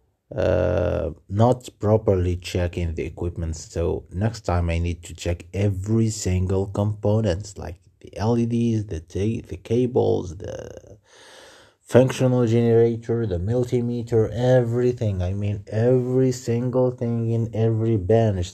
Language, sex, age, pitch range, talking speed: English, male, 30-49, 85-105 Hz, 120 wpm